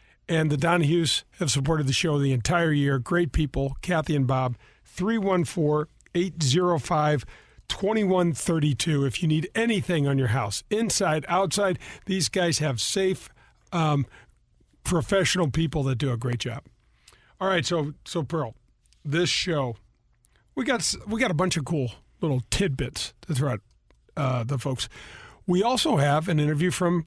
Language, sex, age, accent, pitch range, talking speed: English, male, 50-69, American, 135-180 Hz, 145 wpm